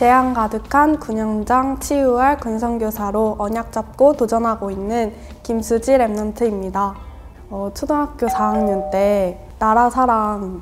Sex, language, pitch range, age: female, Korean, 195-230 Hz, 20-39